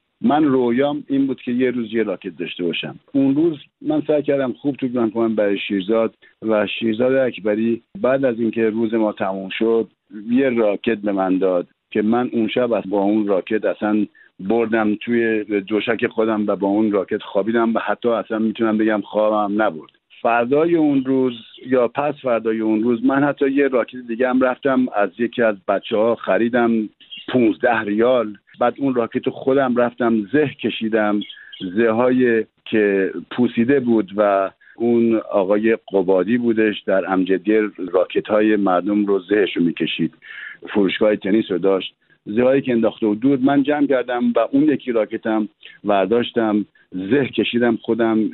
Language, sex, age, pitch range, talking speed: Persian, male, 50-69, 105-130 Hz, 160 wpm